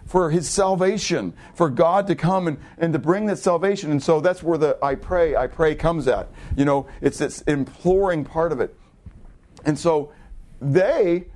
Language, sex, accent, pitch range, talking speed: English, male, American, 150-190 Hz, 185 wpm